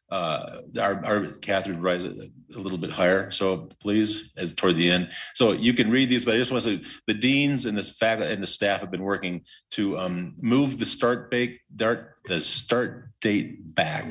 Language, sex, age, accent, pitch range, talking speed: English, male, 40-59, American, 90-110 Hz, 195 wpm